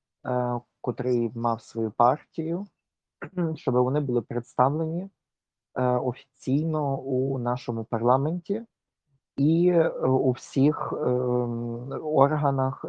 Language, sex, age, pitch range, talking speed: Ukrainian, male, 30-49, 115-135 Hz, 75 wpm